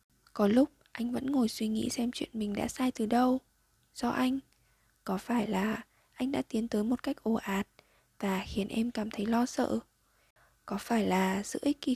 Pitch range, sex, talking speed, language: 215-255 Hz, female, 200 wpm, Vietnamese